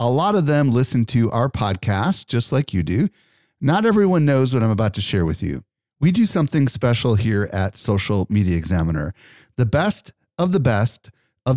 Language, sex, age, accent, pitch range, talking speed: English, male, 40-59, American, 105-140 Hz, 190 wpm